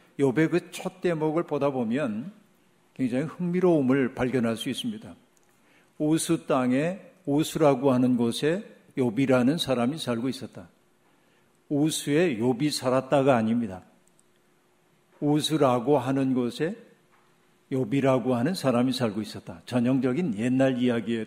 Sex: male